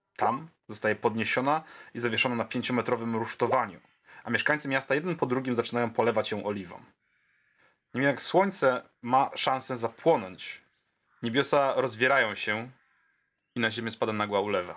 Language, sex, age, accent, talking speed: Polish, male, 30-49, native, 135 wpm